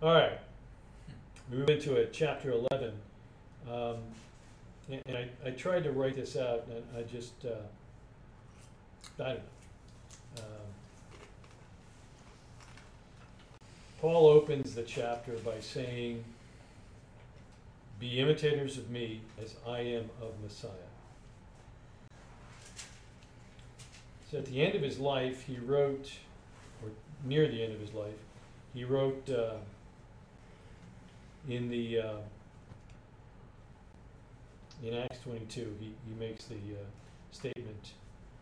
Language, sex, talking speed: English, male, 110 wpm